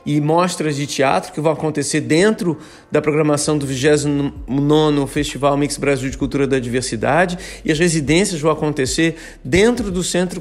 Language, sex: Portuguese, male